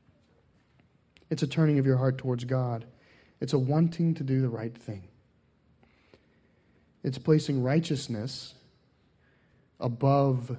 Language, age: English, 30-49